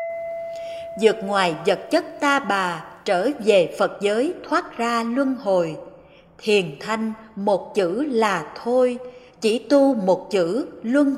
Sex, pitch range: female, 190-305 Hz